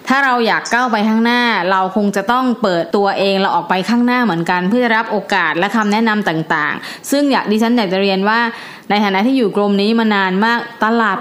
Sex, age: female, 20-39